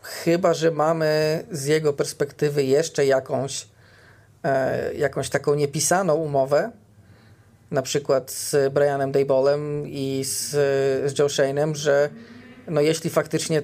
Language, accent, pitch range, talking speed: Polish, native, 130-145 Hz, 110 wpm